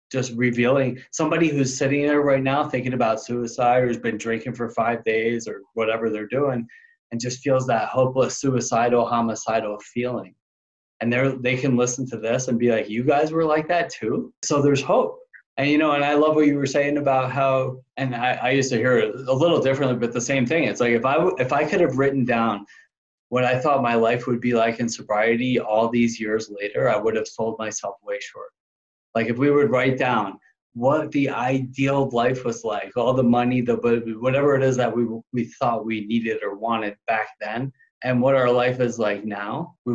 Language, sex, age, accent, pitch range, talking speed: English, male, 20-39, American, 115-140 Hz, 215 wpm